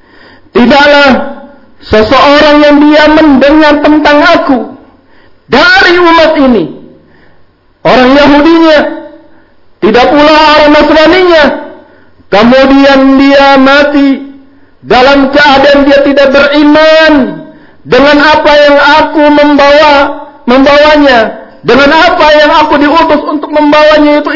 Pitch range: 225-295 Hz